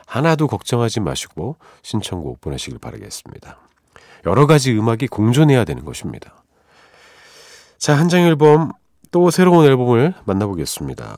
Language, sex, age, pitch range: Korean, male, 40-59, 95-140 Hz